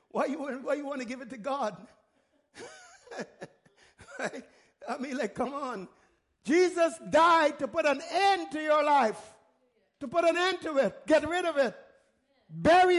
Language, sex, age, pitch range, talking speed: English, male, 60-79, 210-315 Hz, 165 wpm